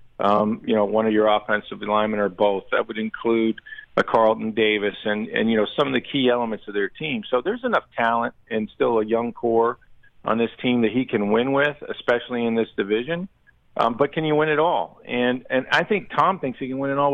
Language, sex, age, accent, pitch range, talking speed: English, male, 50-69, American, 110-140 Hz, 235 wpm